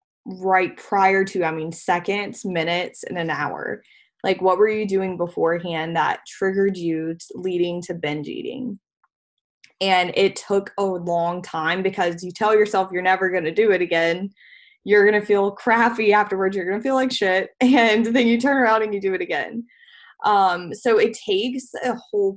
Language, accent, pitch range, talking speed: English, American, 175-215 Hz, 180 wpm